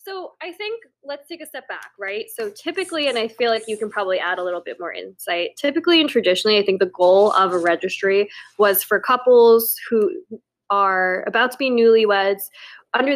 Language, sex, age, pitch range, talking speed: English, female, 10-29, 200-295 Hz, 200 wpm